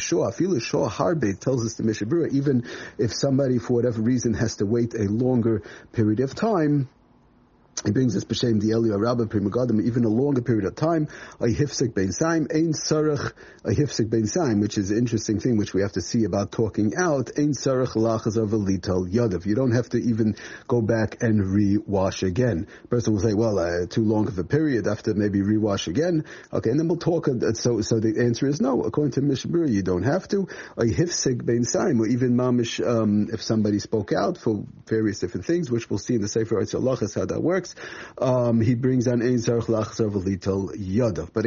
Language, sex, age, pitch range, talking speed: English, male, 30-49, 110-135 Hz, 180 wpm